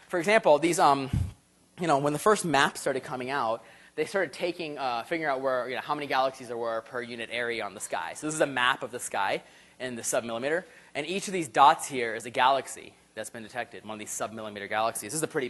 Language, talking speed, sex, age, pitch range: English, 250 wpm, male, 20-39, 130-175 Hz